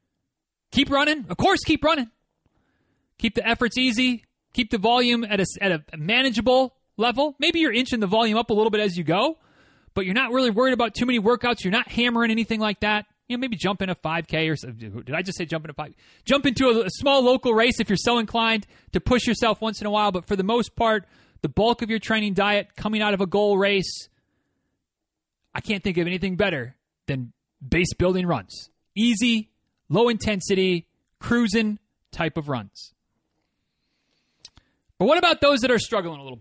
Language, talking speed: English, 200 wpm